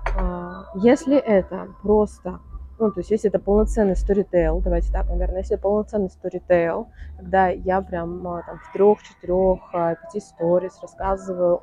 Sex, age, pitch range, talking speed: female, 20-39, 175-215 Hz, 145 wpm